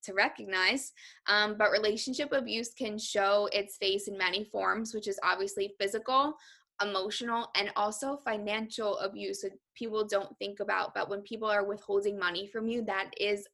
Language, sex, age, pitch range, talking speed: English, female, 10-29, 200-225 Hz, 165 wpm